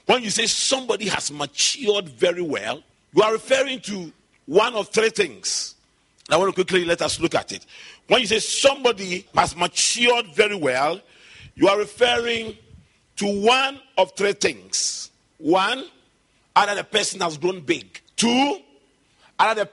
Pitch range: 185-245 Hz